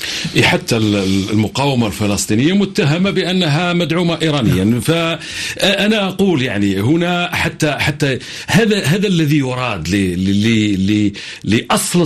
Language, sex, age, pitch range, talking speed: Arabic, male, 50-69, 130-200 Hz, 90 wpm